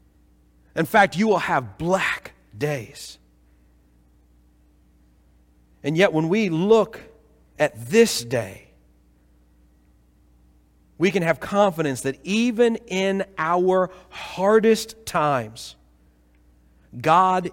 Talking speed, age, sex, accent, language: 90 wpm, 40-59, male, American, English